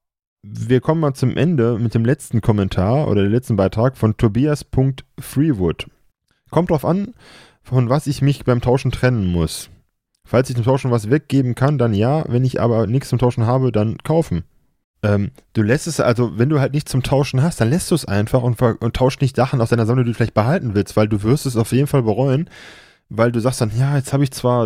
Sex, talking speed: male, 220 wpm